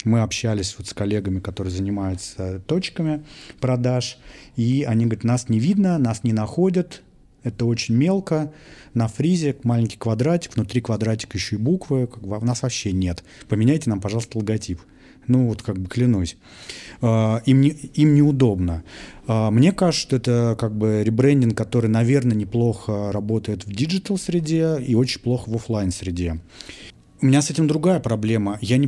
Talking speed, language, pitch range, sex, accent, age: 150 wpm, Russian, 105-130 Hz, male, native, 30-49